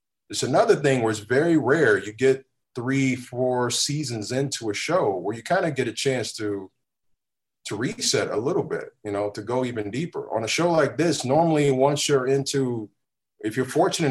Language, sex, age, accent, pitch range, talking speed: English, male, 30-49, American, 105-135 Hz, 195 wpm